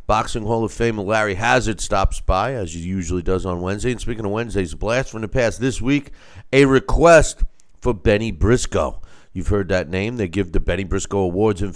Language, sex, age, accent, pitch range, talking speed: English, male, 50-69, American, 90-120 Hz, 205 wpm